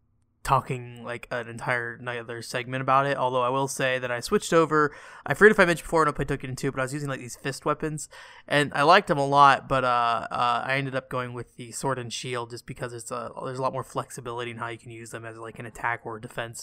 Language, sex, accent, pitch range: English, male, American, 125-150 Hz